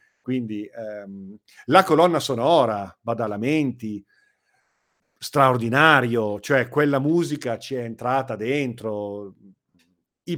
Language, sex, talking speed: Italian, male, 95 wpm